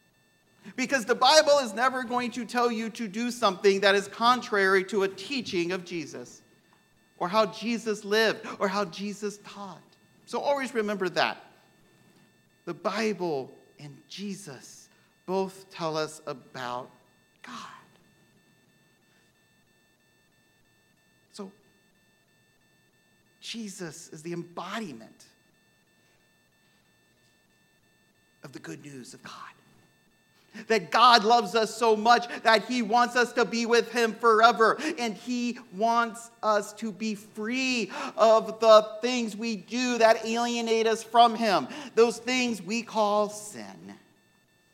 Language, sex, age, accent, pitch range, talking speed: English, male, 50-69, American, 175-235 Hz, 120 wpm